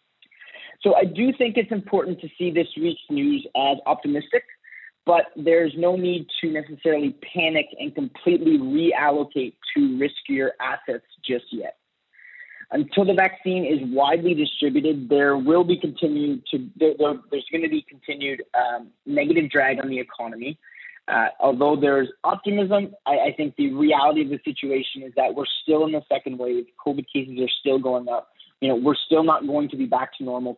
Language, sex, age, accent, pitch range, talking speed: English, male, 30-49, American, 140-195 Hz, 175 wpm